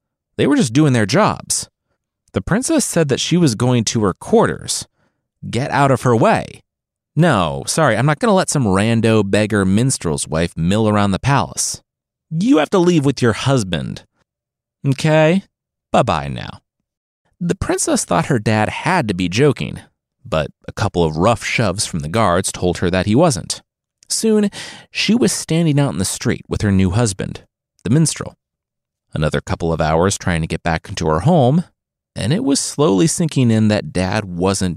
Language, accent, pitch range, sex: English, American, 95-145 Hz, male